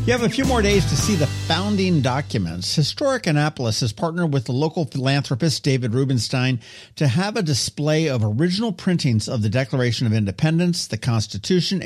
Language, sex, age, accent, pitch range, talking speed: English, male, 50-69, American, 110-170 Hz, 175 wpm